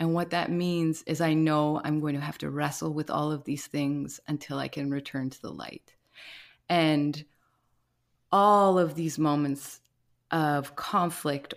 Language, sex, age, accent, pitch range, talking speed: English, female, 20-39, American, 145-170 Hz, 165 wpm